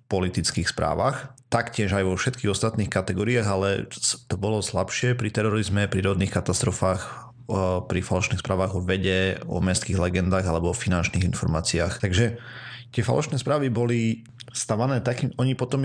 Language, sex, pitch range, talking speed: Slovak, male, 95-120 Hz, 145 wpm